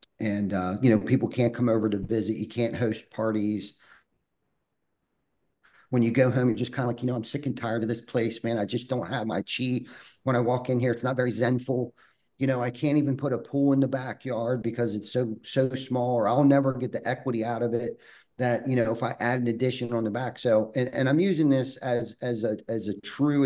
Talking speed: 245 wpm